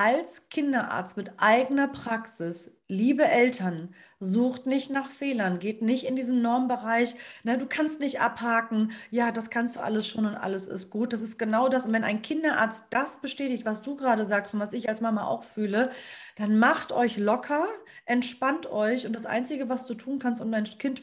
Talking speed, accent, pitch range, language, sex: 190 wpm, German, 205-250 Hz, German, female